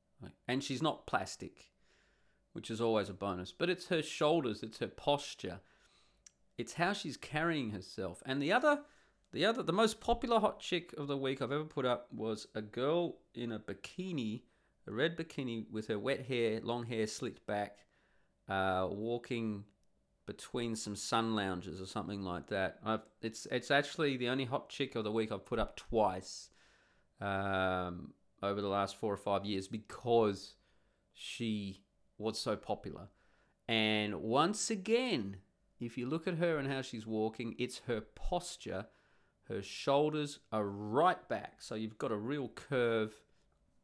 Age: 30-49